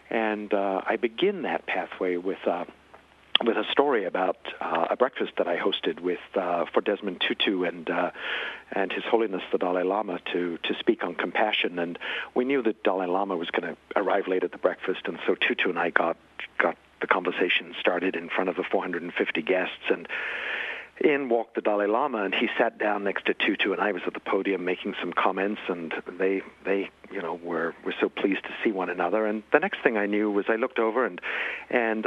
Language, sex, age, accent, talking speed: English, male, 60-79, American, 215 wpm